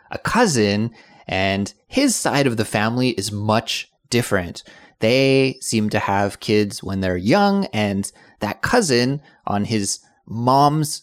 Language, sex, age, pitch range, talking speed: English, male, 20-39, 100-120 Hz, 135 wpm